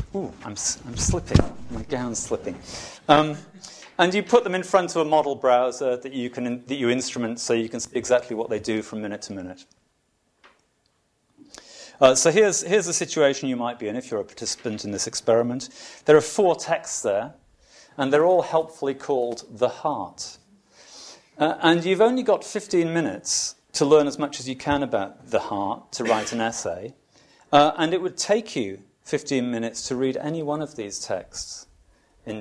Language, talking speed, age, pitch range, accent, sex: English, 190 wpm, 40-59, 115-155 Hz, British, male